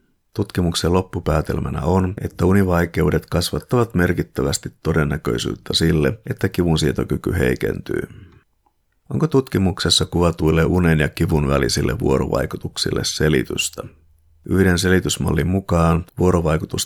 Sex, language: male, Finnish